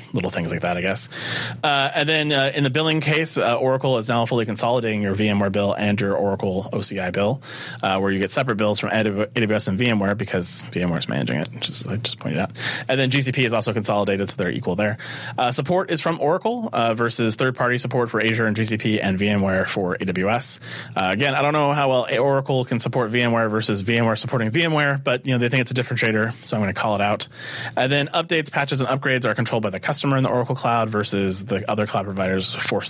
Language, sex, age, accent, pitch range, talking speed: English, male, 30-49, American, 100-130 Hz, 230 wpm